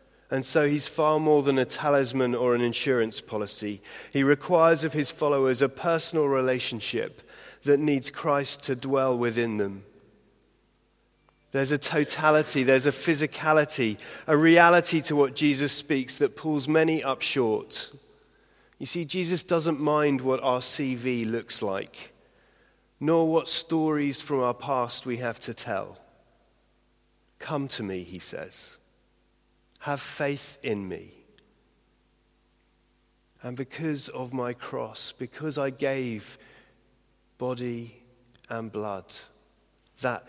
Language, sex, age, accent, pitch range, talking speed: English, male, 30-49, British, 120-150 Hz, 125 wpm